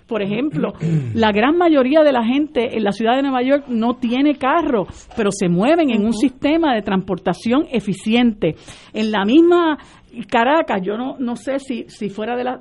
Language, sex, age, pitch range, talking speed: Spanish, female, 50-69, 210-275 Hz, 185 wpm